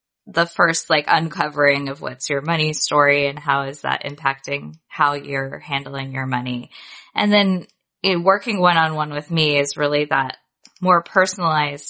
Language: English